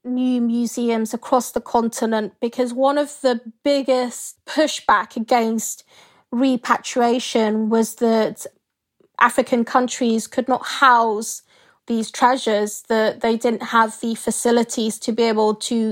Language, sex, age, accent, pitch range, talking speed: English, female, 20-39, British, 225-250 Hz, 120 wpm